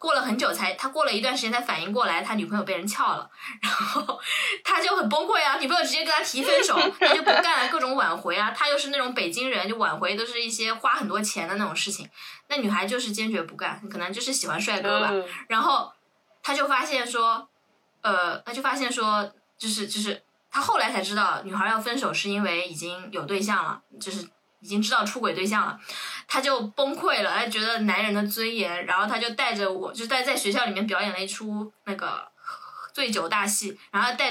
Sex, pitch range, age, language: female, 205-285 Hz, 20-39, Chinese